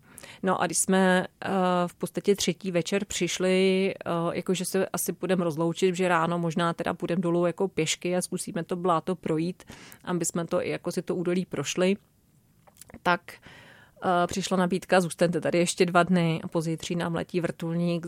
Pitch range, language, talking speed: 165-180 Hz, Czech, 160 wpm